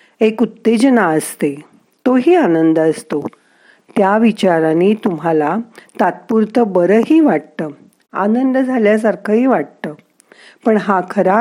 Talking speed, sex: 95 wpm, female